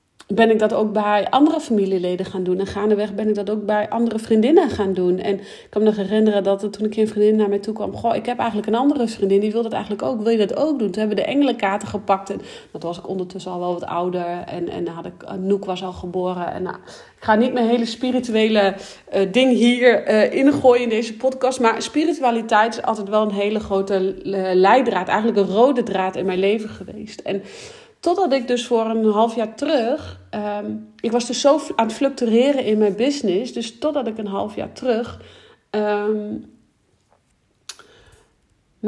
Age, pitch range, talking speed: 40-59, 205-235 Hz, 215 wpm